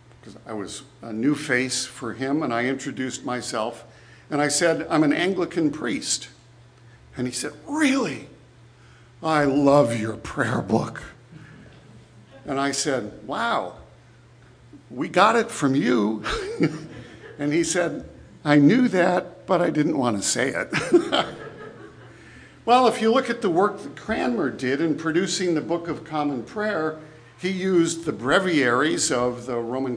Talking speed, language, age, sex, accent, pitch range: 145 wpm, English, 50-69, male, American, 120-155 Hz